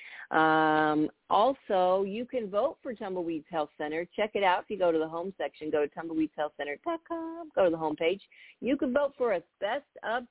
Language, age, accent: English, 40-59, American